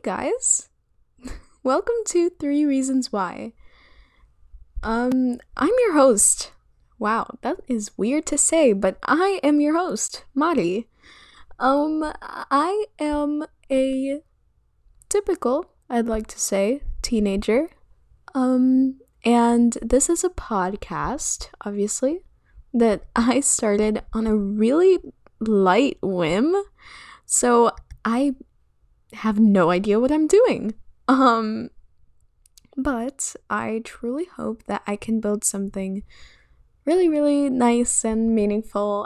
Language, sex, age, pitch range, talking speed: English, female, 10-29, 215-290 Hz, 110 wpm